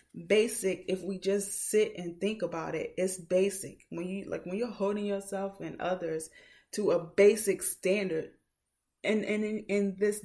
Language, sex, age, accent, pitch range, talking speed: English, female, 20-39, American, 170-225 Hz, 165 wpm